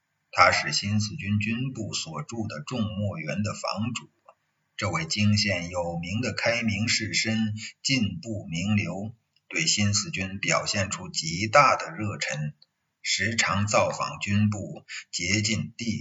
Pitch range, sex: 95-110 Hz, male